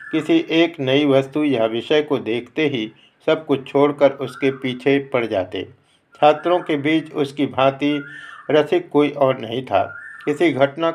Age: 60-79